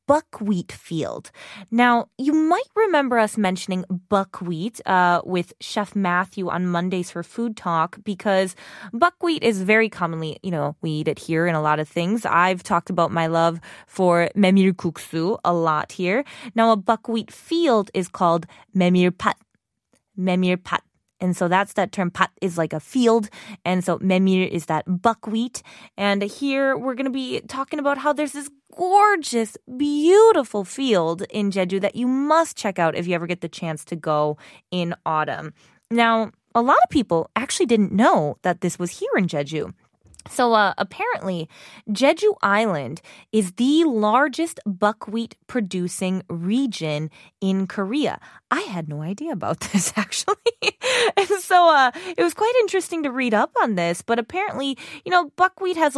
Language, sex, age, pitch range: Korean, female, 20-39, 175-245 Hz